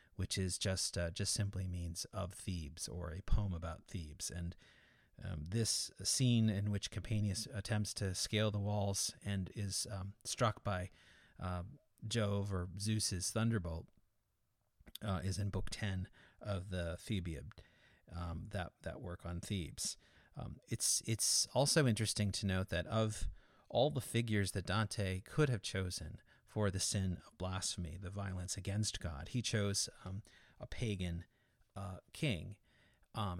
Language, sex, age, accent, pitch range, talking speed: English, male, 30-49, American, 90-110 Hz, 150 wpm